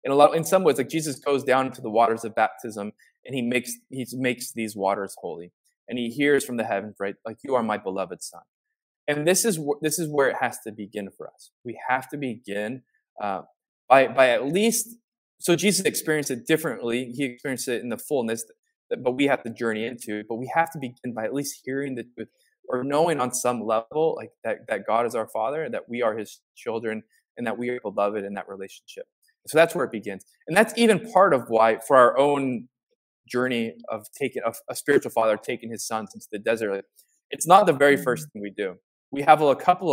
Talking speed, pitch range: 235 wpm, 115-160 Hz